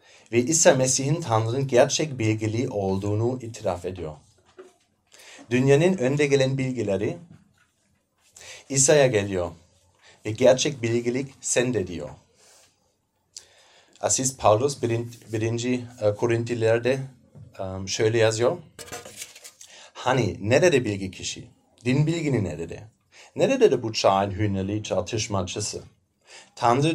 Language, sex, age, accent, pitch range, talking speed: Turkish, male, 30-49, German, 105-130 Hz, 90 wpm